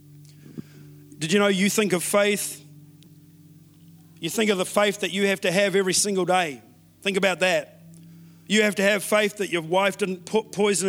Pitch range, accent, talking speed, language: 165-230 Hz, Australian, 185 wpm, English